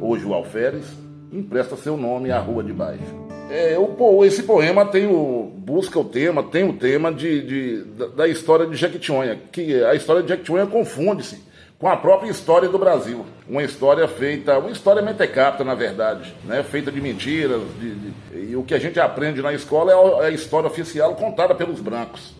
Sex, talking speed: male, 165 wpm